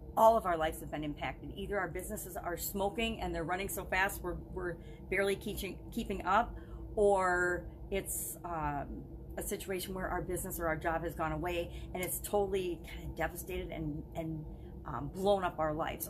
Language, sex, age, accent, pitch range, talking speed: English, female, 40-59, American, 170-215 Hz, 185 wpm